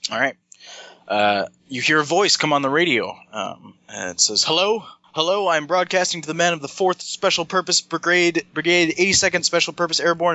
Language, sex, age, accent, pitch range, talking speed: English, male, 20-39, American, 155-180 Hz, 190 wpm